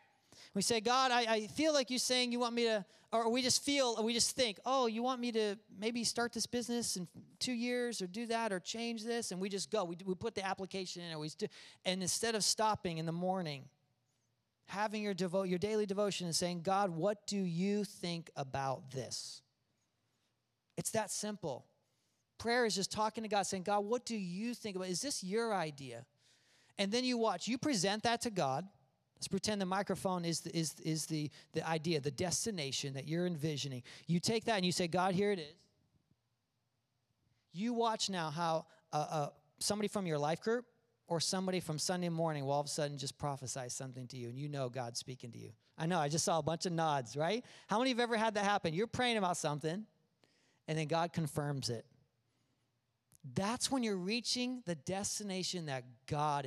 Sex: male